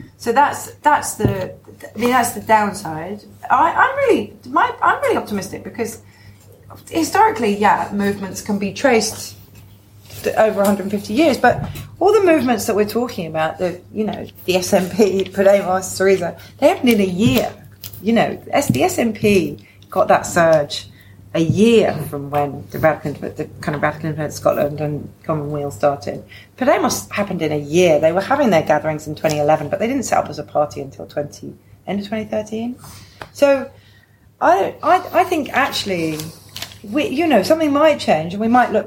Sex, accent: female, British